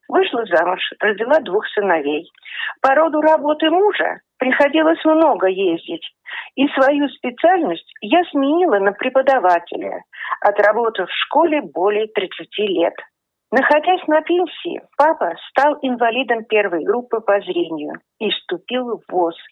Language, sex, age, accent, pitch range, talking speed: Russian, female, 50-69, native, 190-295 Hz, 120 wpm